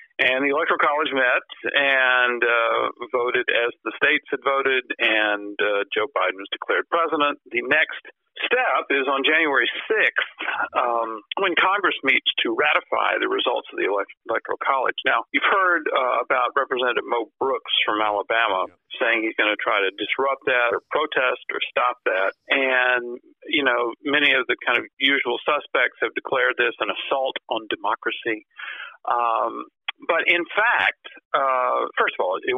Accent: American